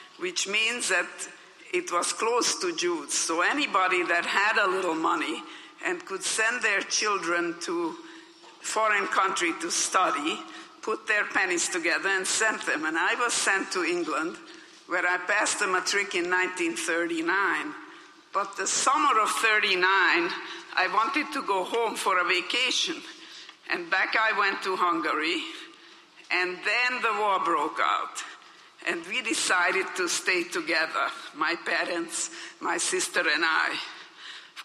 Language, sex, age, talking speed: English, female, 60-79, 145 wpm